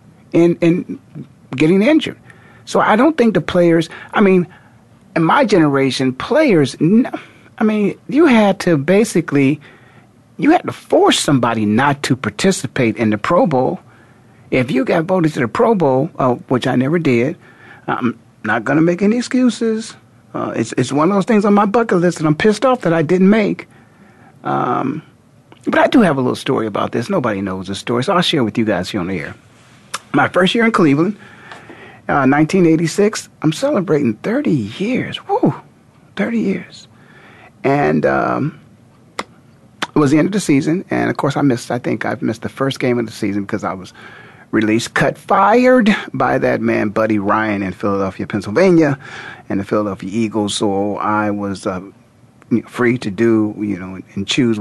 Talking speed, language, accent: 185 wpm, English, American